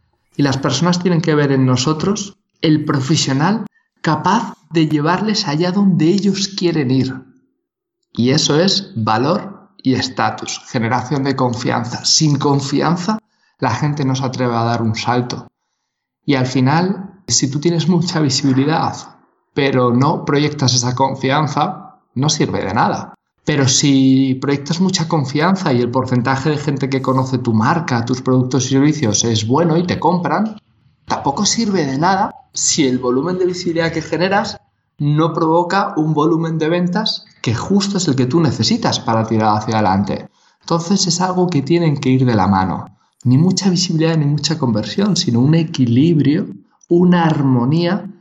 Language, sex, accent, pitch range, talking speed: Spanish, male, Spanish, 130-180 Hz, 160 wpm